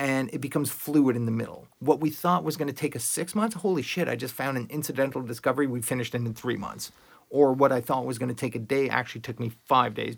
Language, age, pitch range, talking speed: English, 30-49, 120-155 Hz, 255 wpm